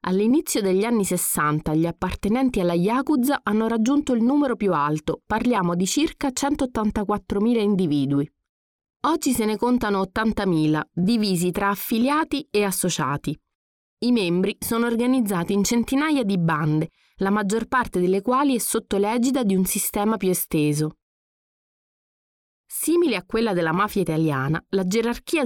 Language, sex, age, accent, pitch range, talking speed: Italian, female, 30-49, native, 175-250 Hz, 135 wpm